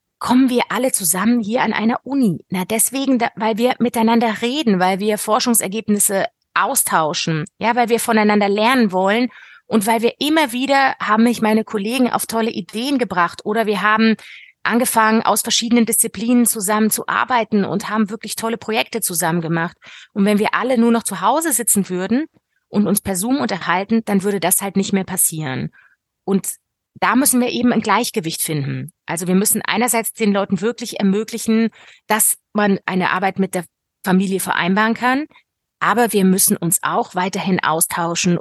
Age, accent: 30-49, German